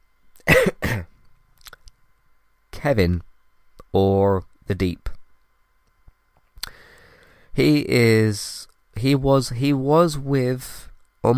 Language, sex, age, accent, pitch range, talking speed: English, male, 20-39, British, 90-110 Hz, 65 wpm